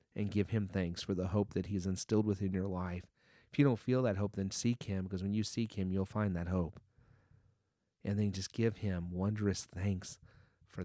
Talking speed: 215 wpm